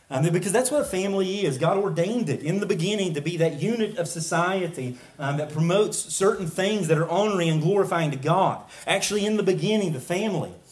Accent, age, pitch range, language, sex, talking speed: American, 30-49, 160-200 Hz, English, male, 200 wpm